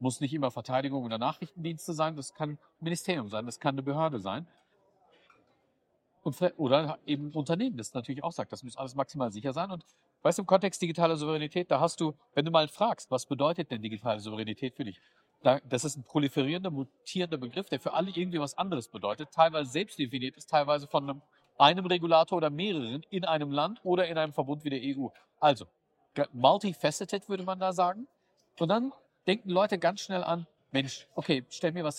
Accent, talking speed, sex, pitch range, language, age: German, 195 wpm, male, 135-170 Hz, English, 50-69